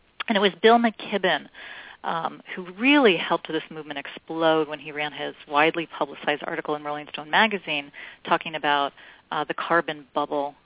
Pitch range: 150-180 Hz